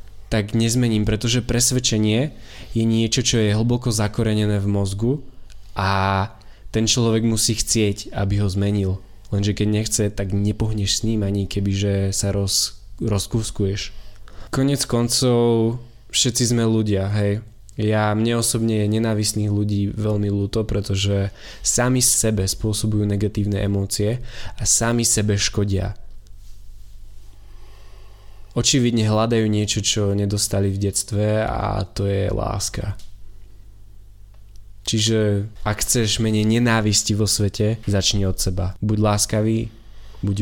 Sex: male